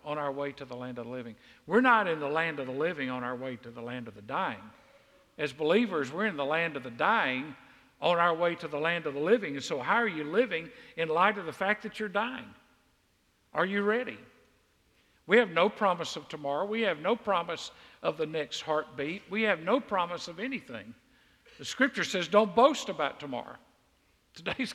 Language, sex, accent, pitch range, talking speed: English, male, American, 150-215 Hz, 215 wpm